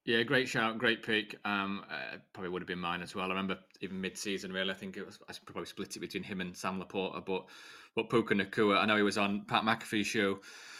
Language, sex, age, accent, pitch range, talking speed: English, male, 20-39, British, 105-140 Hz, 245 wpm